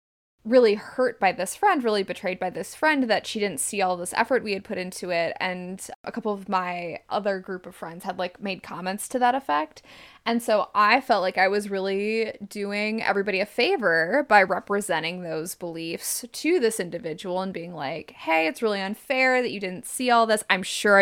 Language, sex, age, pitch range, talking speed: English, female, 20-39, 185-255 Hz, 205 wpm